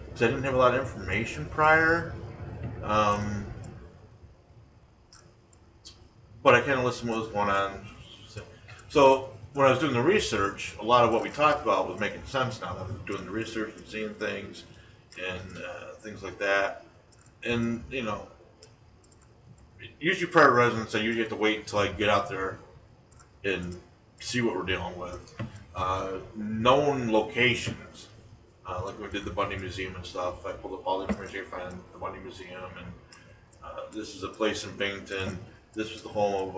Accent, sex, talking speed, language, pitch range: American, male, 180 wpm, English, 95-115 Hz